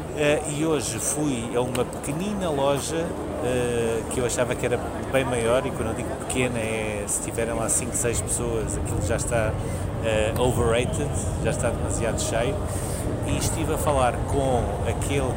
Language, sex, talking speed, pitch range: Portuguese, male, 170 wpm, 105-140 Hz